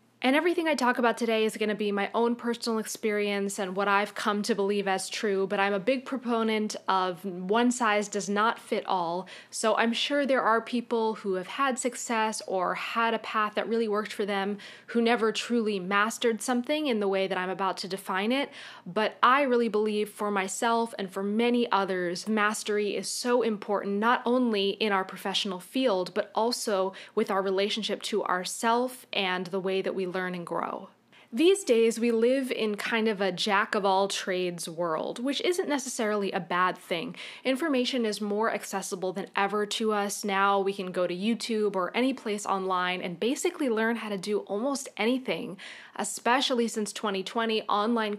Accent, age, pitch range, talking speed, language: American, 20-39, 195-235 Hz, 185 wpm, English